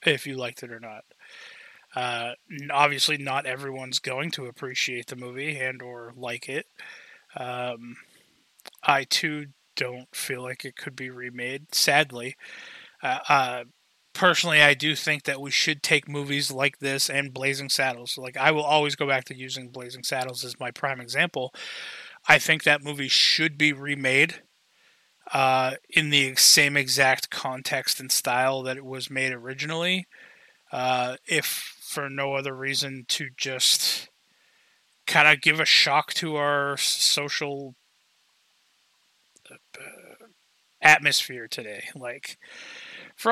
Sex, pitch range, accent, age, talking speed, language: male, 130-150 Hz, American, 20-39, 140 wpm, English